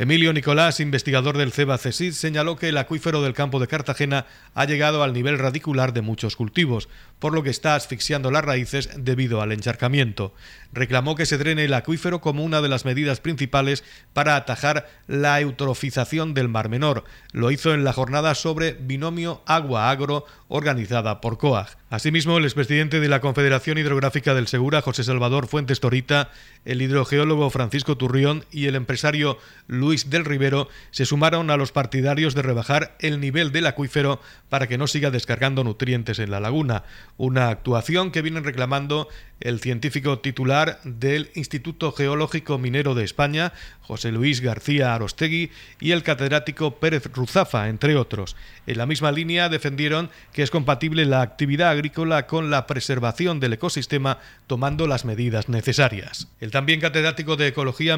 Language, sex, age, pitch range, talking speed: Spanish, male, 50-69, 130-150 Hz, 160 wpm